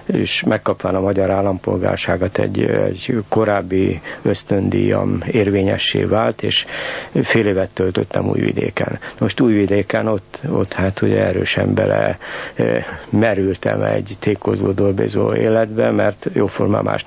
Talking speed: 115 wpm